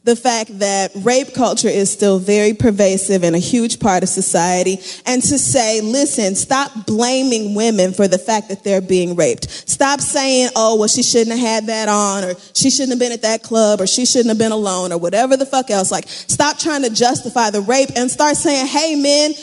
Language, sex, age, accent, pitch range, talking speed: English, female, 30-49, American, 215-275 Hz, 215 wpm